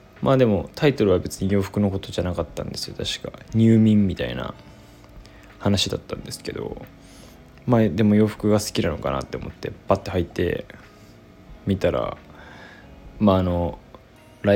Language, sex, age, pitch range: Japanese, male, 20-39, 85-100 Hz